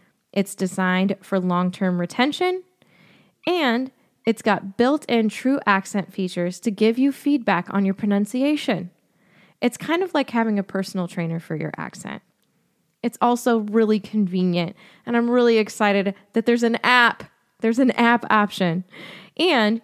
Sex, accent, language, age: female, American, English, 20-39